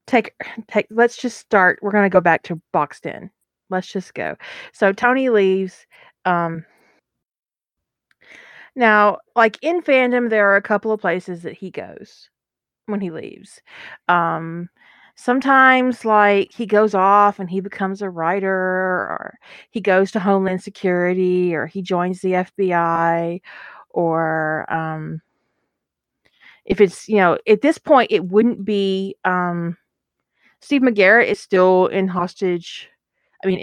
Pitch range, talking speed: 180-225 Hz, 140 wpm